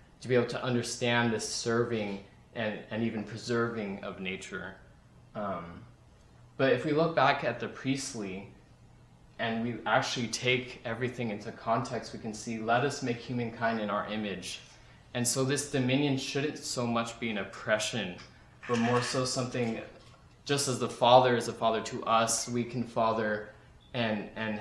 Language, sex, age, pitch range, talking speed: English, male, 20-39, 105-120 Hz, 165 wpm